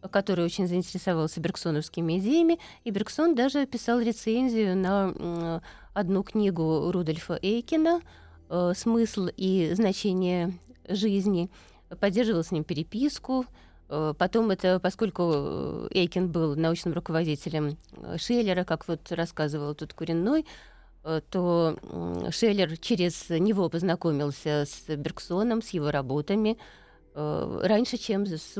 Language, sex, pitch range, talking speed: Russian, female, 160-210 Hz, 105 wpm